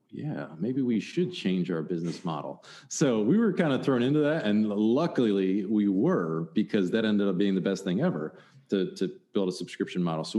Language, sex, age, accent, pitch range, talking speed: English, male, 40-59, American, 95-130 Hz, 210 wpm